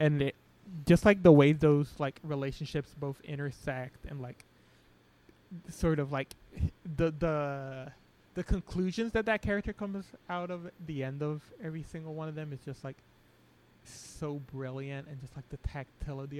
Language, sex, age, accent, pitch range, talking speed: English, male, 20-39, American, 130-155 Hz, 155 wpm